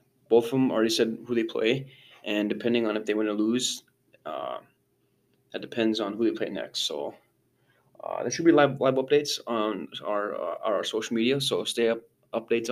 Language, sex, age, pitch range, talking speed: English, male, 20-39, 115-130 Hz, 200 wpm